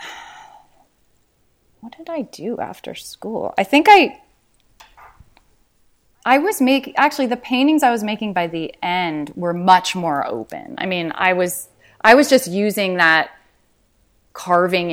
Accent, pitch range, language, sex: American, 150-185 Hz, English, female